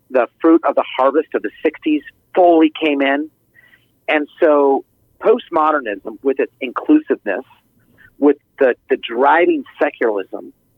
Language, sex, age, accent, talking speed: English, male, 40-59, American, 120 wpm